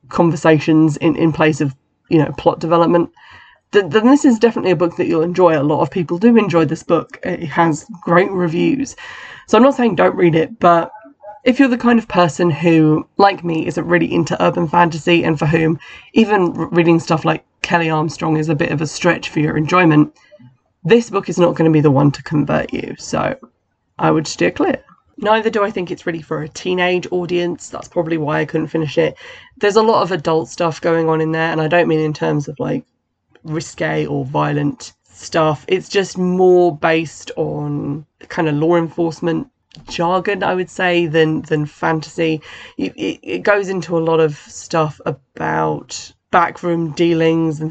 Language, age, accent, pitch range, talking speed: English, 20-39, British, 155-180 Hz, 195 wpm